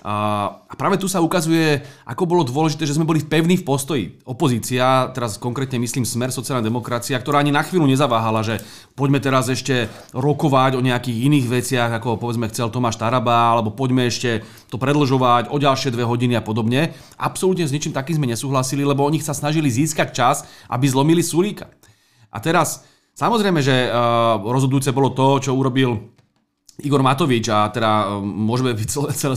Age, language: 30-49, Slovak